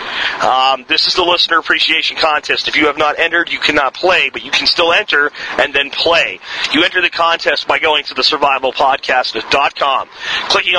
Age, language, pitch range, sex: 40-59, English, 140-170 Hz, male